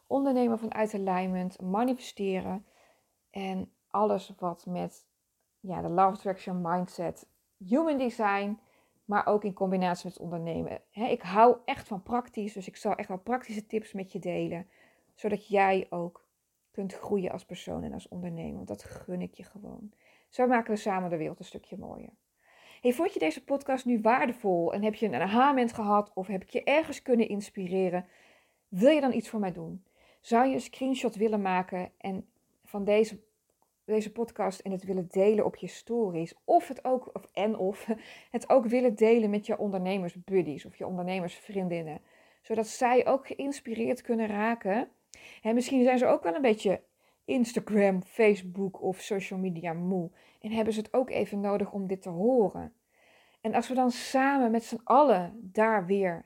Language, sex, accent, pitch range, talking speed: Dutch, female, Dutch, 185-235 Hz, 170 wpm